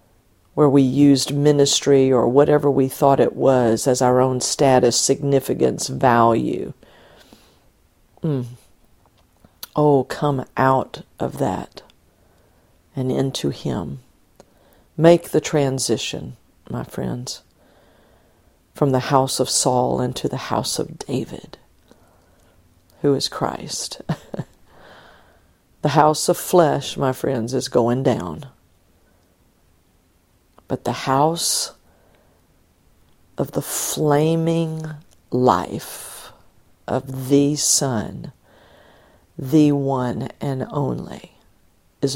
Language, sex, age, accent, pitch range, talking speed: English, female, 50-69, American, 105-145 Hz, 95 wpm